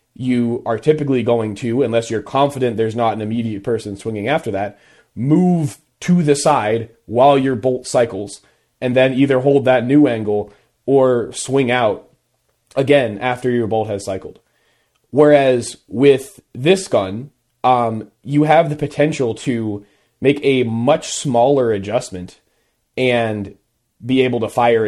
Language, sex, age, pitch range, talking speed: English, male, 30-49, 115-140 Hz, 145 wpm